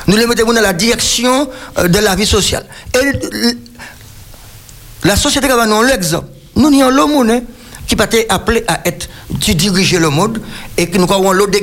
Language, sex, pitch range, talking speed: French, male, 130-215 Hz, 185 wpm